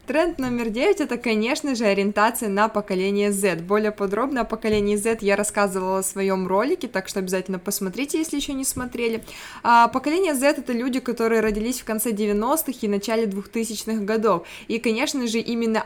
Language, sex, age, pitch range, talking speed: Russian, female, 20-39, 200-230 Hz, 170 wpm